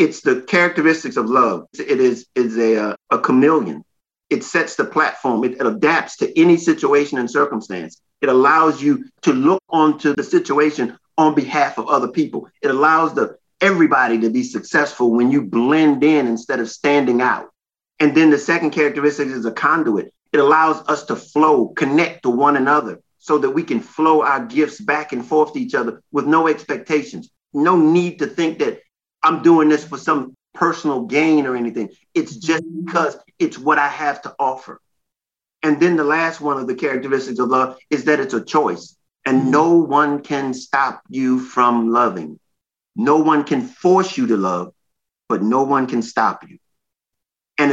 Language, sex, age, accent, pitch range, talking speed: English, male, 50-69, American, 130-165 Hz, 180 wpm